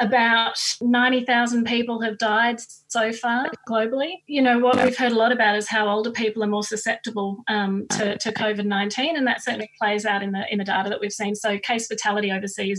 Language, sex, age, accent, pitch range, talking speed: English, female, 30-49, Australian, 200-235 Hz, 205 wpm